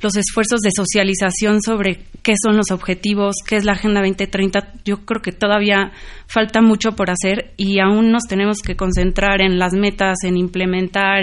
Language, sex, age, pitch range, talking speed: Spanish, female, 20-39, 185-205 Hz, 175 wpm